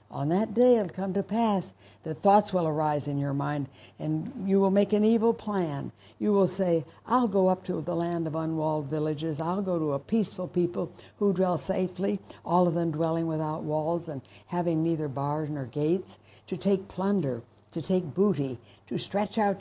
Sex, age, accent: female, 60-79, American